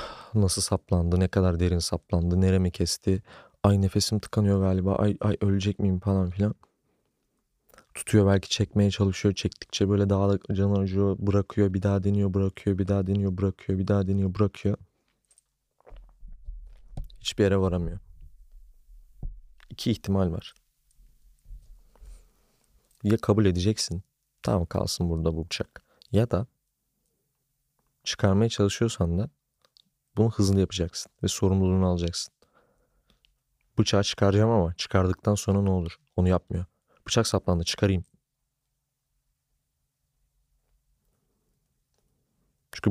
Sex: male